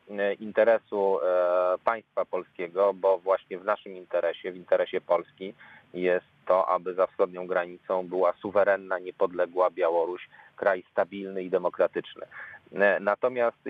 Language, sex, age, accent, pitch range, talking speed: Polish, male, 40-59, native, 90-100 Hz, 115 wpm